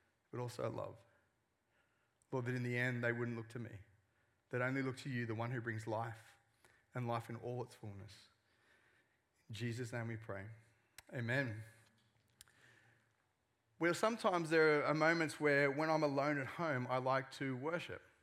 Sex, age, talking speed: male, 30-49, 165 wpm